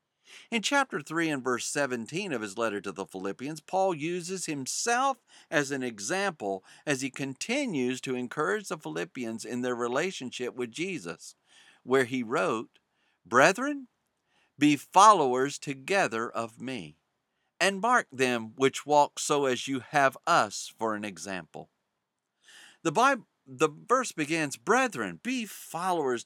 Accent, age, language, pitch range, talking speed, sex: American, 50-69, English, 115-175 Hz, 135 wpm, male